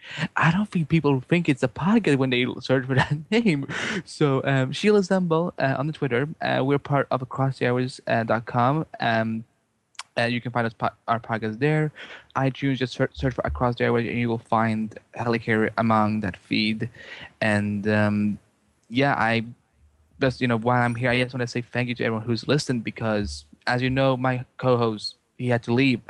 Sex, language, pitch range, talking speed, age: male, English, 115-135 Hz, 200 wpm, 20-39